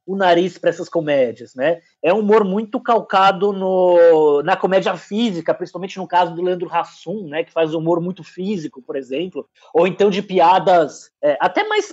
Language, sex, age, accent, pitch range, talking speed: Portuguese, male, 20-39, Brazilian, 165-225 Hz, 180 wpm